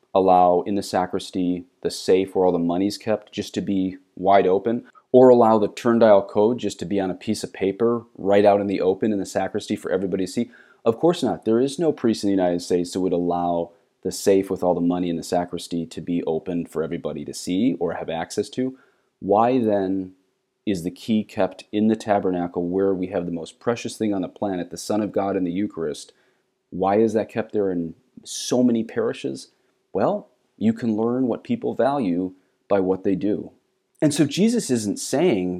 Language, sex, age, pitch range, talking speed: English, male, 30-49, 90-110 Hz, 215 wpm